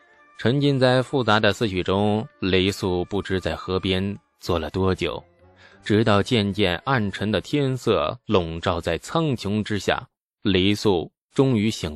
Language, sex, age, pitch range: Chinese, male, 20-39, 100-155 Hz